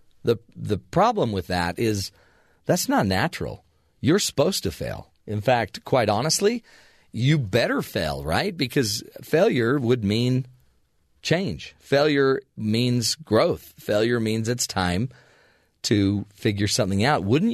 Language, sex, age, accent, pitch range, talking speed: English, male, 40-59, American, 105-135 Hz, 130 wpm